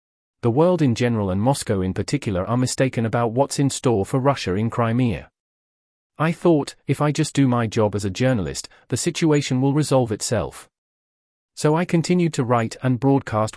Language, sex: English, male